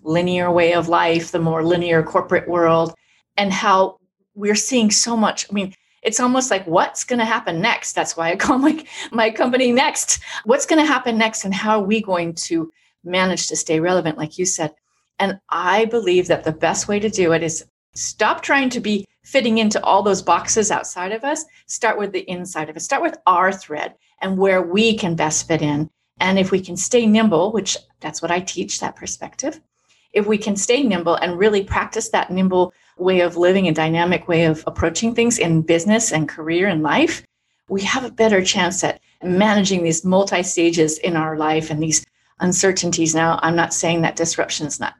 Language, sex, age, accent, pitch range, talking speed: English, female, 40-59, American, 165-215 Hz, 205 wpm